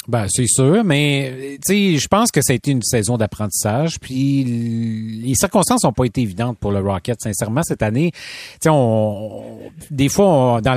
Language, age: French, 30-49